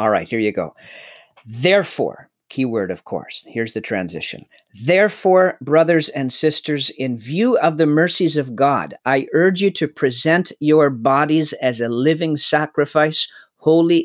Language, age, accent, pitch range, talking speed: English, 50-69, American, 125-160 Hz, 150 wpm